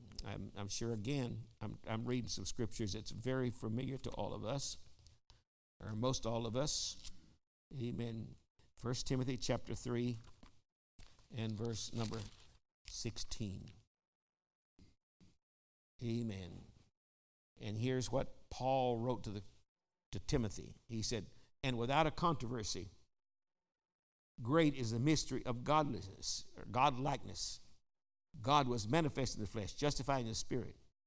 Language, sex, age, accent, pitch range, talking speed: English, male, 60-79, American, 105-130 Hz, 120 wpm